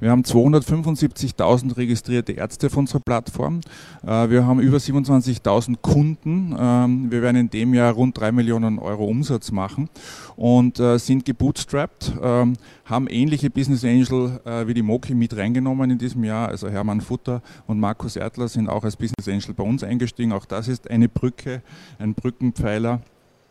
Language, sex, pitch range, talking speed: German, male, 110-130 Hz, 155 wpm